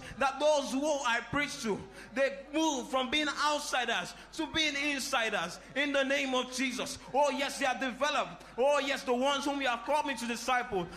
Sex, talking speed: male, 190 wpm